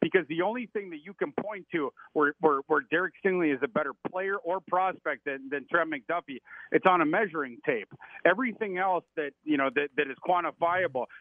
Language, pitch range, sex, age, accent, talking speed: English, 145-185 Hz, male, 50-69, American, 205 wpm